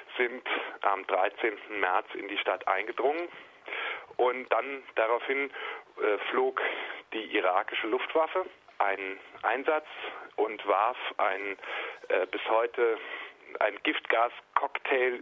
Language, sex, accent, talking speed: German, male, German, 105 wpm